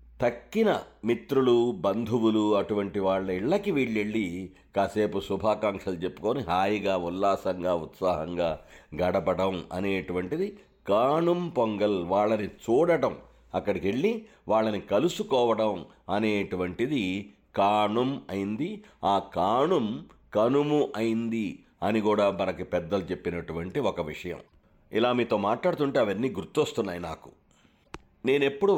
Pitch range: 95-120 Hz